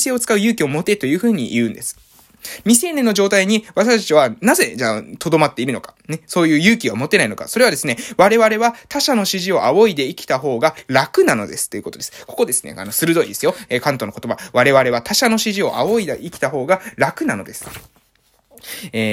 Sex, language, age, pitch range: male, Japanese, 20-39, 145-225 Hz